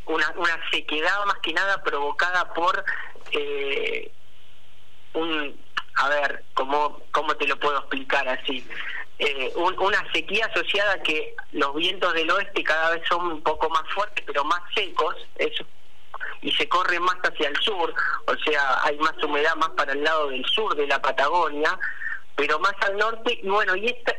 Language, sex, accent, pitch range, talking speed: Spanish, male, Argentinian, 155-230 Hz, 170 wpm